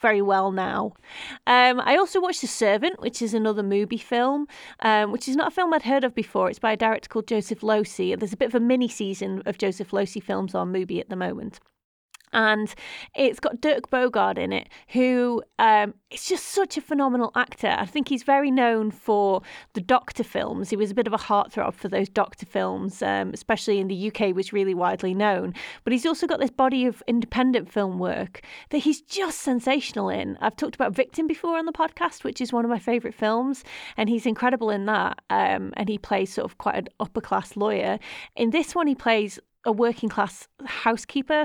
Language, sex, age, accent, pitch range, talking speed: English, female, 30-49, British, 210-270 Hz, 210 wpm